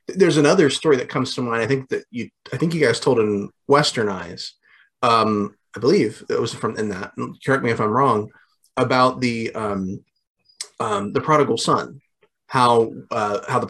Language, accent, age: English, American, 30-49